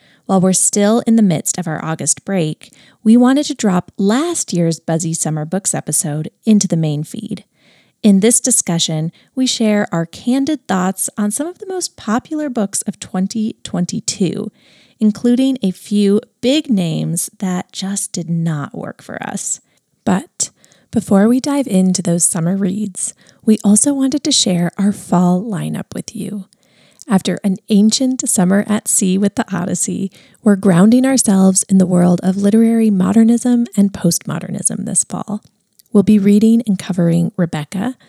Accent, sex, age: American, female, 30-49